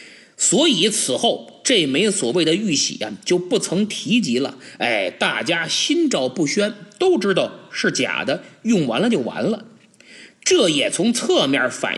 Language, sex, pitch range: Chinese, male, 170-245 Hz